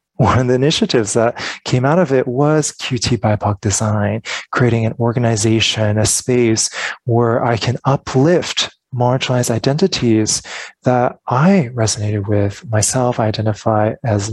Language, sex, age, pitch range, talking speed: English, male, 20-39, 115-145 Hz, 135 wpm